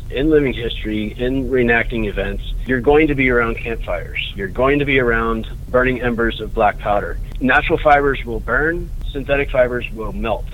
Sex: male